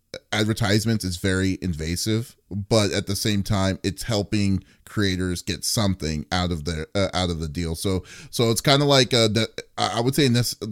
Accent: American